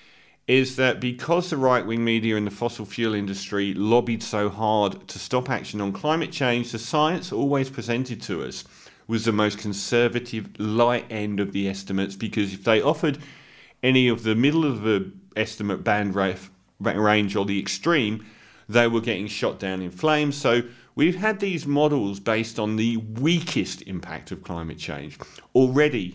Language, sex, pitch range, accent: English, male, 100-125 Hz, British